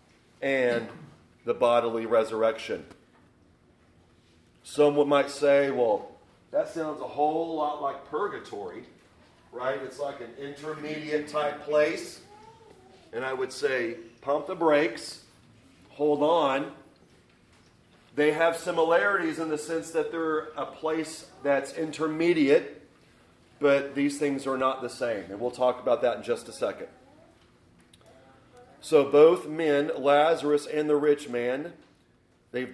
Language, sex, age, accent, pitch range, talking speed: English, male, 40-59, American, 130-150 Hz, 125 wpm